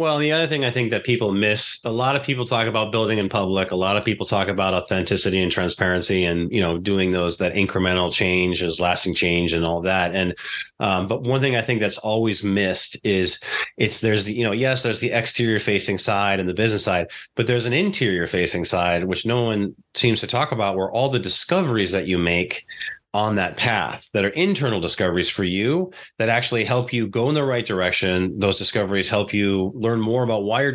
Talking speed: 220 wpm